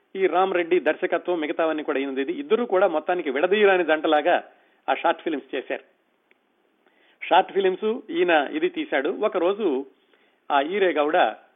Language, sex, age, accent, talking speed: Telugu, male, 40-59, native, 145 wpm